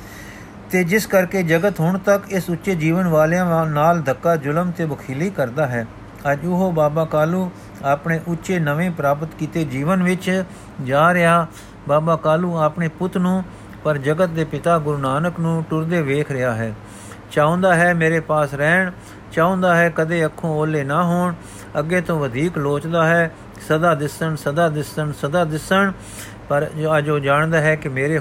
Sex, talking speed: male, 160 wpm